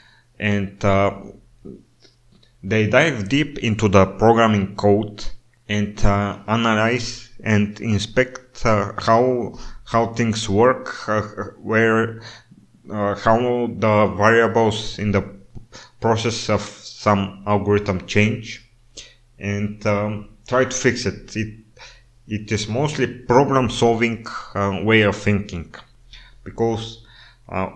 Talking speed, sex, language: 105 wpm, male, English